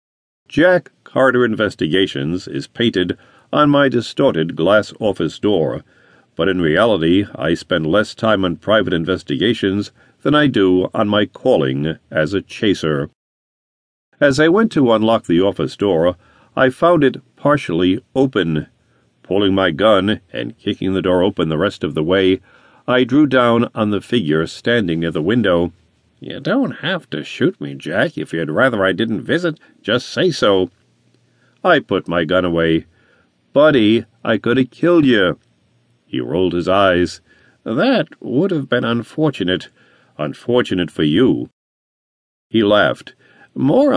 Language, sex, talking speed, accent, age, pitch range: English, male, 145 wpm, American, 50-69, 90-125 Hz